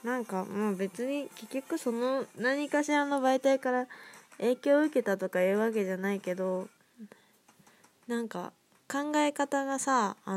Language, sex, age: Japanese, female, 20-39